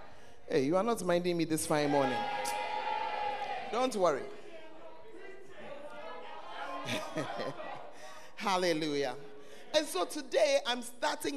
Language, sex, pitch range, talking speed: English, male, 185-290 Hz, 90 wpm